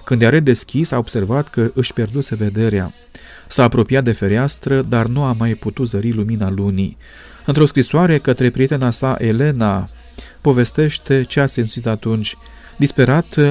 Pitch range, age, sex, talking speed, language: 110-140 Hz, 40-59, male, 145 wpm, Romanian